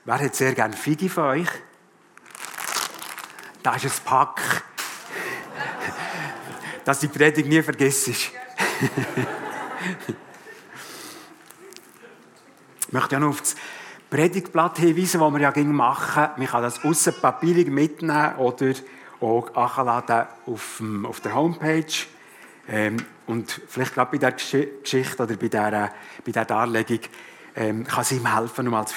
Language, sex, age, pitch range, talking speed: German, male, 60-79, 125-170 Hz, 115 wpm